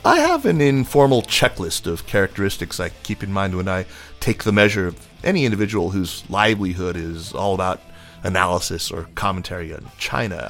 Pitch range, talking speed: 95-125 Hz, 165 wpm